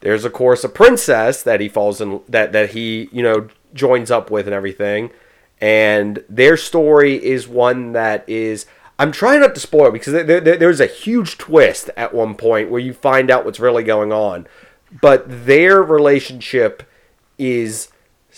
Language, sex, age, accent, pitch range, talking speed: English, male, 30-49, American, 105-140 Hz, 175 wpm